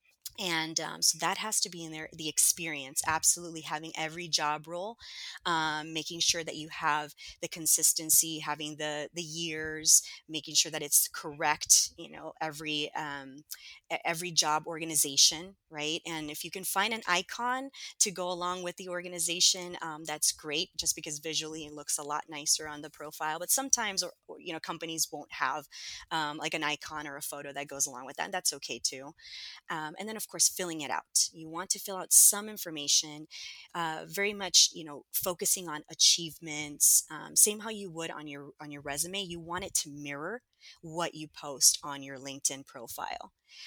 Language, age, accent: English, 20-39, American